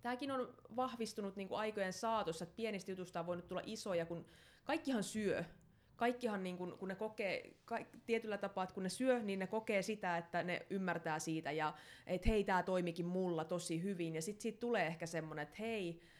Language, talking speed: Finnish, 195 wpm